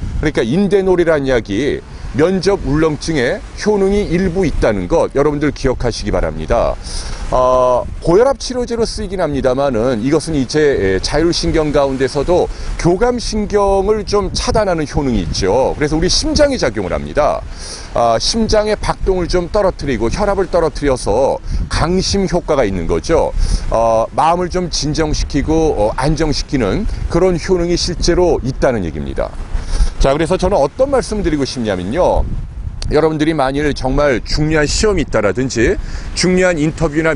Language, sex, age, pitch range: Korean, male, 40-59, 135-180 Hz